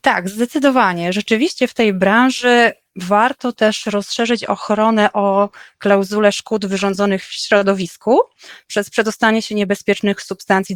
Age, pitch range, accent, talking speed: 20-39, 195-235 Hz, native, 115 wpm